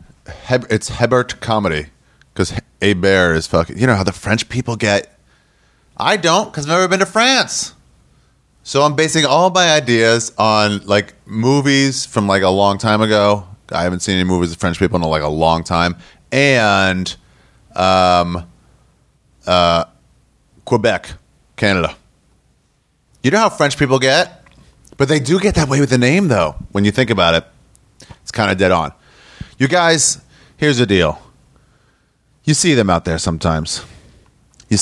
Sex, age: male, 30-49